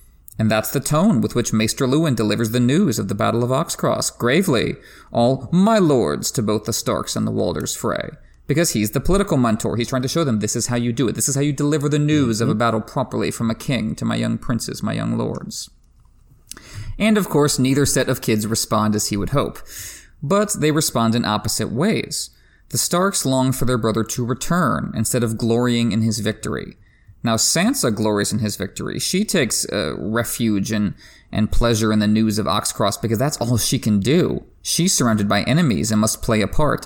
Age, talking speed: 30-49, 210 wpm